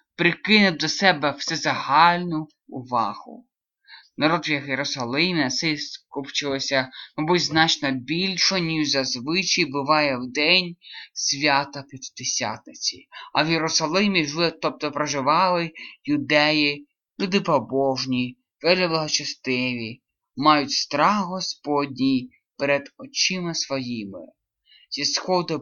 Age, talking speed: 20-39, 85 wpm